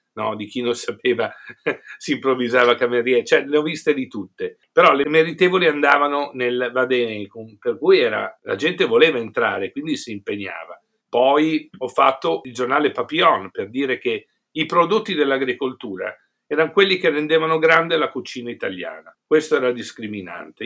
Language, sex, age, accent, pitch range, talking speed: Italian, male, 50-69, native, 125-185 Hz, 155 wpm